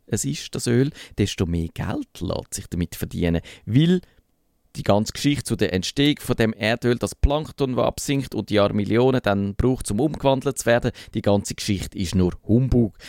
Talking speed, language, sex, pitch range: 180 wpm, German, male, 90-120 Hz